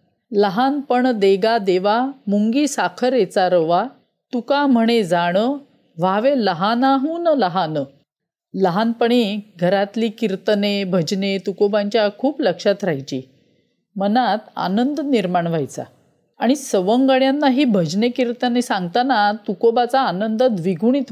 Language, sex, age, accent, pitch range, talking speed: Marathi, female, 40-59, native, 200-255 Hz, 90 wpm